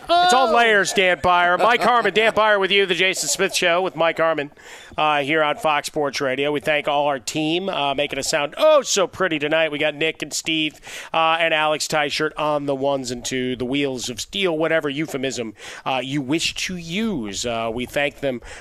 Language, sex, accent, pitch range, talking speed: English, male, American, 140-170 Hz, 210 wpm